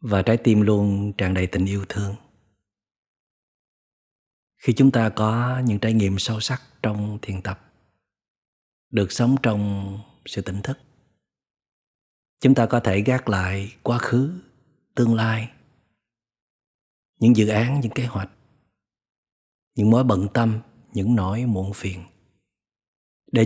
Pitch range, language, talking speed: 100-125 Hz, Vietnamese, 135 wpm